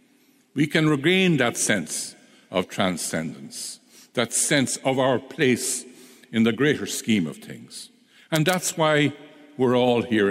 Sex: male